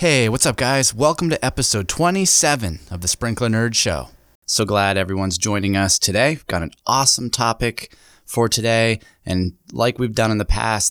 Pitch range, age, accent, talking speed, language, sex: 90-115 Hz, 20-39, American, 175 wpm, English, male